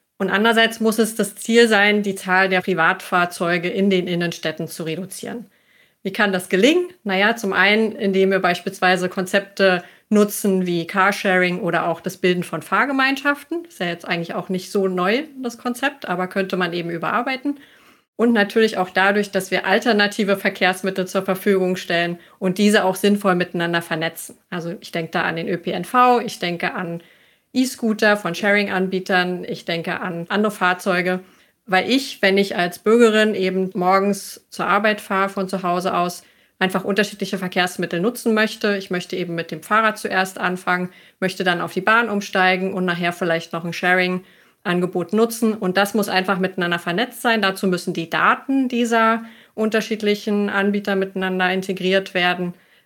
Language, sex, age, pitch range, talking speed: German, female, 30-49, 180-210 Hz, 165 wpm